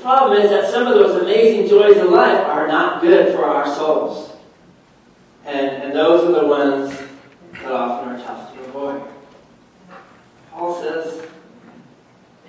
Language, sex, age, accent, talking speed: English, male, 40-59, American, 155 wpm